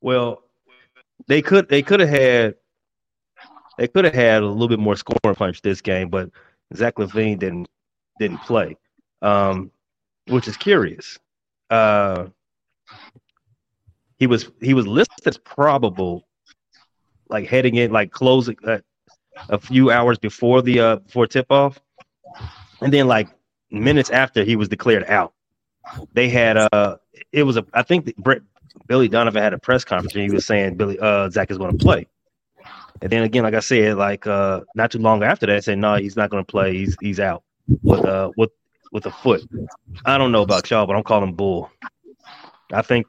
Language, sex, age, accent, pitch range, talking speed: English, male, 30-49, American, 100-120 Hz, 180 wpm